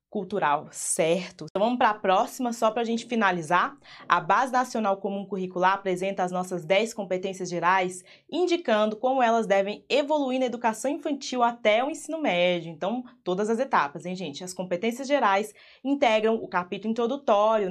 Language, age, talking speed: Portuguese, 20-39, 165 wpm